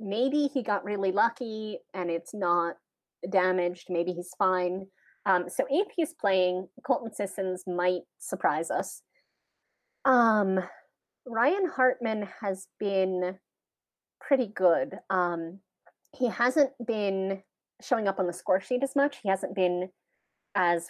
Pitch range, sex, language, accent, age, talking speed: 180-235 Hz, female, English, American, 30-49, 130 wpm